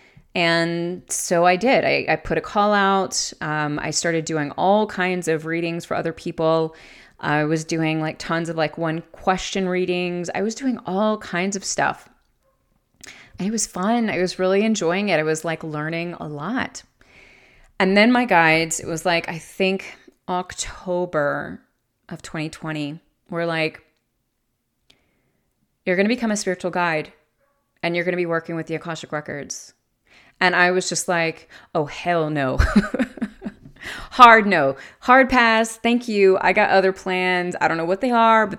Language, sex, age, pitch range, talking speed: English, female, 30-49, 165-205 Hz, 170 wpm